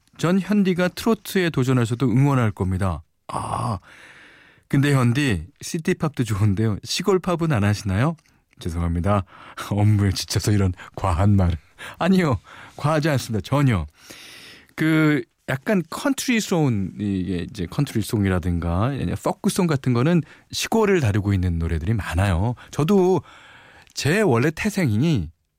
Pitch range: 95-155 Hz